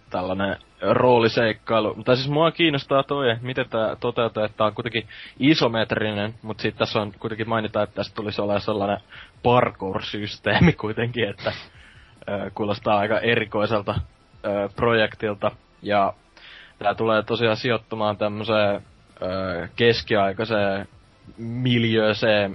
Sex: male